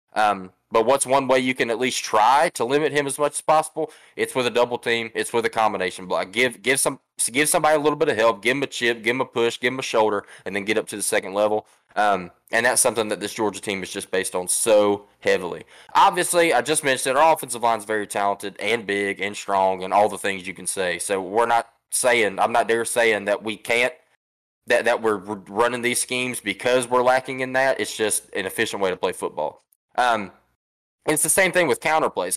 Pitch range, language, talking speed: 105-140 Hz, English, 250 wpm